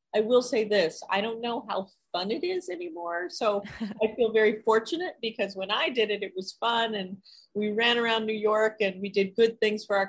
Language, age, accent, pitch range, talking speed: English, 40-59, American, 185-215 Hz, 225 wpm